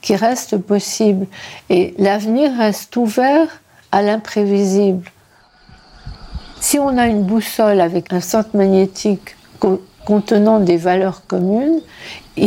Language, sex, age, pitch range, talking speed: French, female, 60-79, 180-225 Hz, 115 wpm